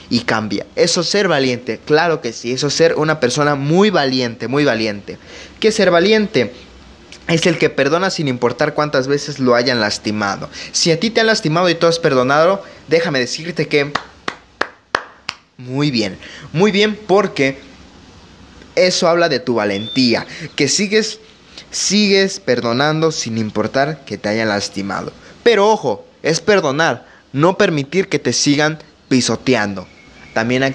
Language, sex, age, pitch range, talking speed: Spanish, male, 20-39, 125-180 Hz, 150 wpm